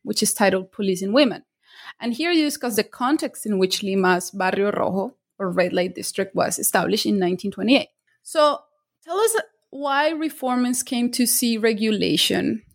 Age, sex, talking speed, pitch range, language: 20-39, female, 155 wpm, 200-270 Hz, English